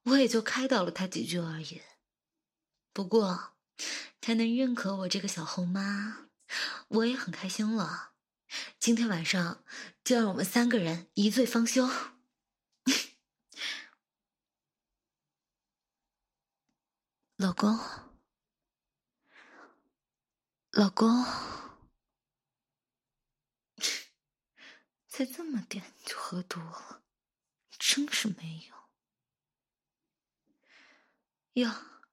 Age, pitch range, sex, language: 20-39, 180-245 Hz, female, Chinese